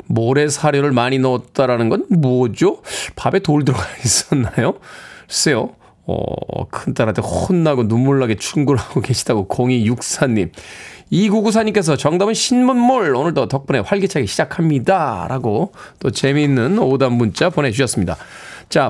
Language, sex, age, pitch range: Korean, male, 20-39, 135-200 Hz